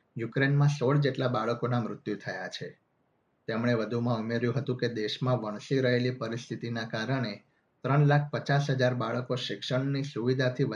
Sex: male